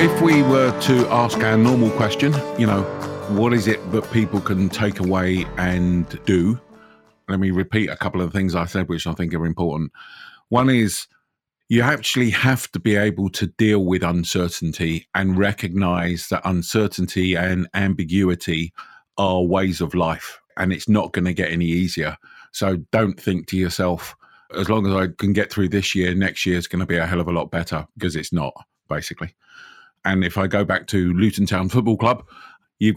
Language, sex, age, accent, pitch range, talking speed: English, male, 50-69, British, 85-100 Hz, 190 wpm